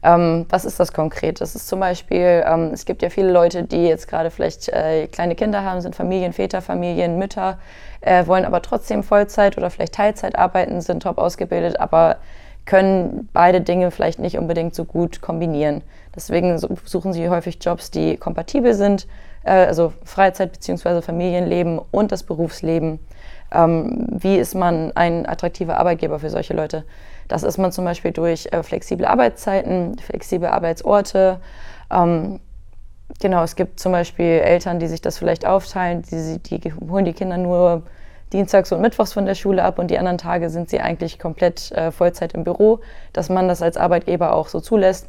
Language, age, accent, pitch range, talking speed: German, 20-39, German, 165-190 Hz, 170 wpm